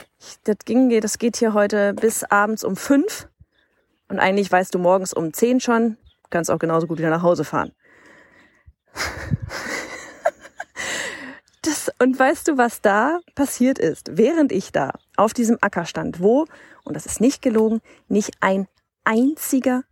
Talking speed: 150 wpm